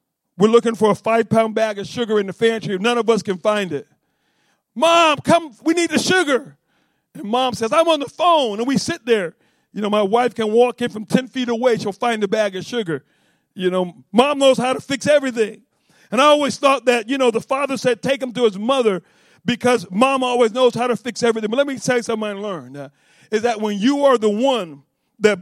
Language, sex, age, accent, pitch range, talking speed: English, male, 50-69, American, 215-270 Hz, 235 wpm